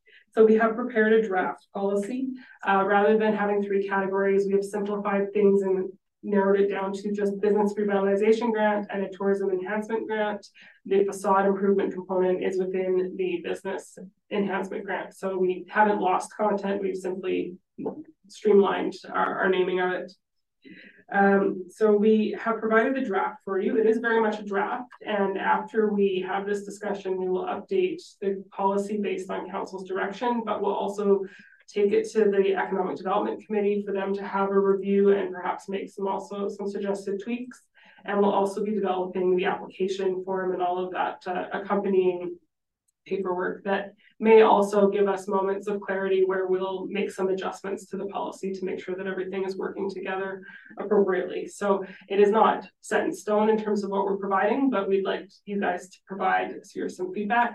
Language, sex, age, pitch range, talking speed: English, female, 20-39, 190-210 Hz, 175 wpm